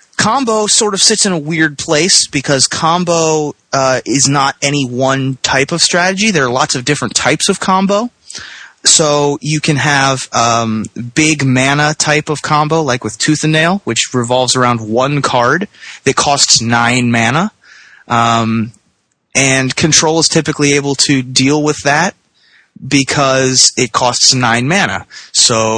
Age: 20-39